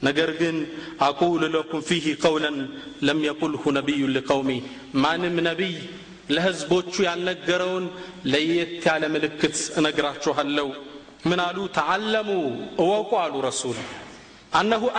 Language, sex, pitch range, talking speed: Amharic, male, 145-195 Hz, 100 wpm